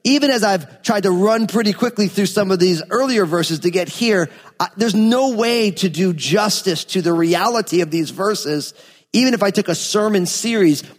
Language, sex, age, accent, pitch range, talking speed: English, male, 40-59, American, 165-220 Hz, 200 wpm